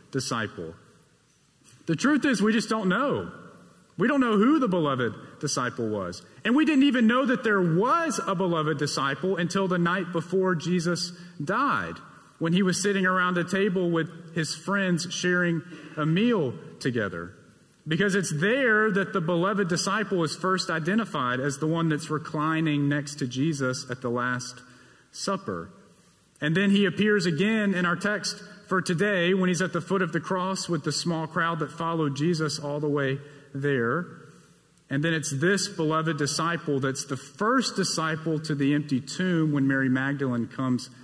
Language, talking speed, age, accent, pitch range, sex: English, 170 wpm, 40-59, American, 145-195 Hz, male